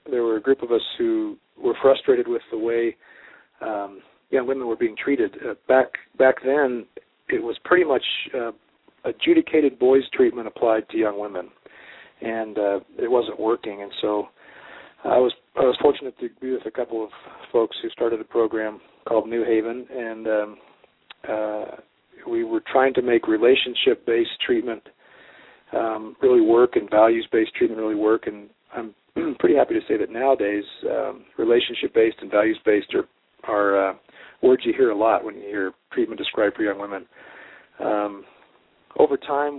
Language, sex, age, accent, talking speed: English, male, 40-59, American, 170 wpm